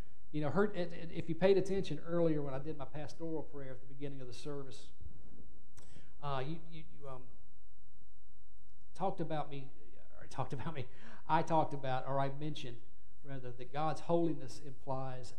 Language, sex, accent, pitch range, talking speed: English, male, American, 125-155 Hz, 165 wpm